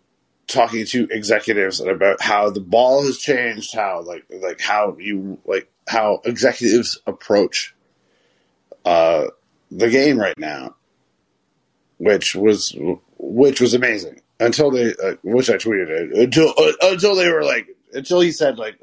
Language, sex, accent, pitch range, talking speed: English, male, American, 100-155 Hz, 140 wpm